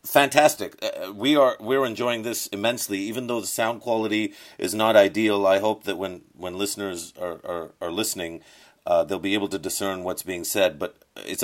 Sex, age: male, 40-59